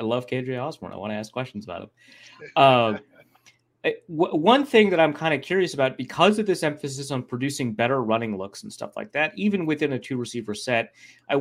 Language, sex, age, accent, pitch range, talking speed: English, male, 30-49, American, 120-155 Hz, 215 wpm